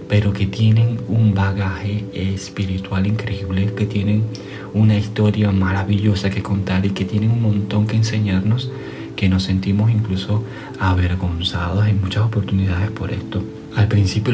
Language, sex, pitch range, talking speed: Spanish, male, 95-110 Hz, 140 wpm